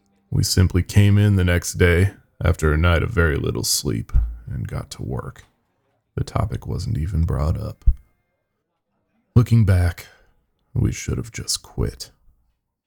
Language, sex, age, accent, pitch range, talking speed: English, male, 20-39, American, 85-105 Hz, 145 wpm